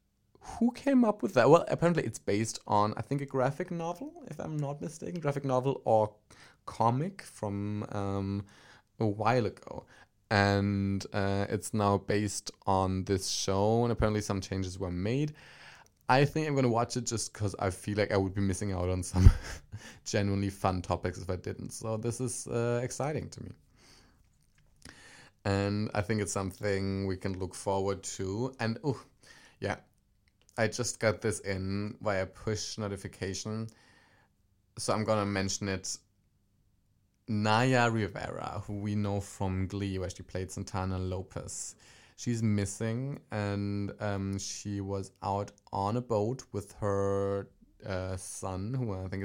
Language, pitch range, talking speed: English, 95-115 Hz, 155 wpm